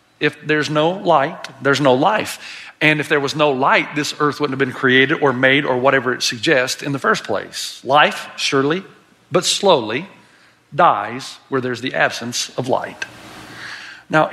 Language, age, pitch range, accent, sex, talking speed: English, 50-69, 150-225 Hz, American, male, 170 wpm